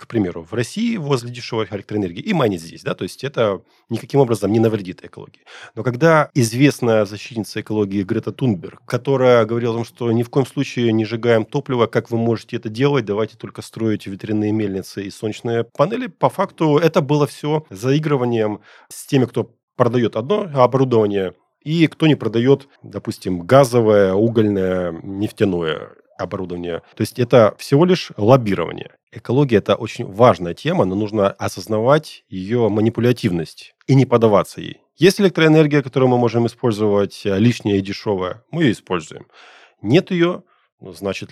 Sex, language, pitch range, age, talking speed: male, Russian, 105-135 Hz, 30-49, 150 wpm